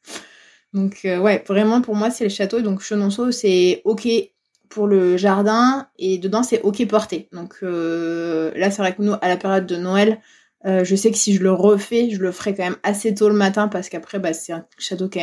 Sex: female